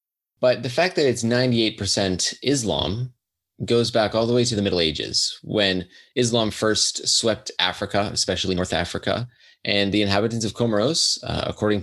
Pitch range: 90-115 Hz